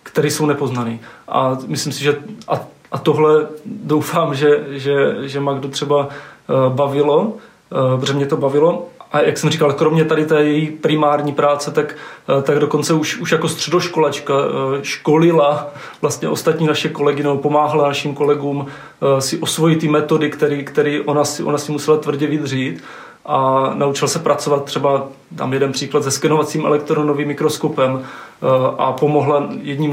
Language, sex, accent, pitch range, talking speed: Czech, male, native, 140-150 Hz, 150 wpm